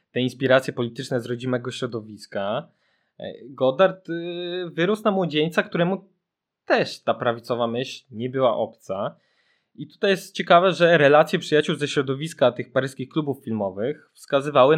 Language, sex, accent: Polish, male, native